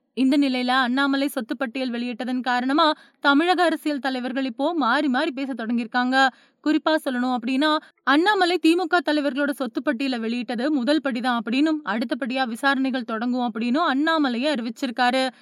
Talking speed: 85 wpm